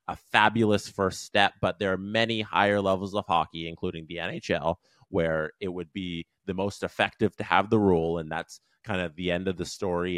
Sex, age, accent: male, 30-49, American